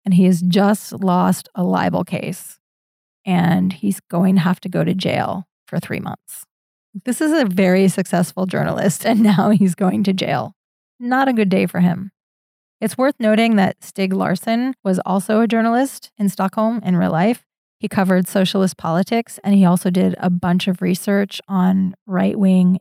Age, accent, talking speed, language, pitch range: 30-49, American, 175 wpm, English, 180-205 Hz